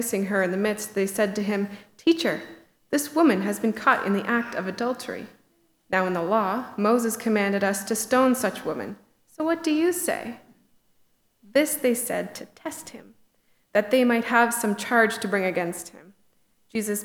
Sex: female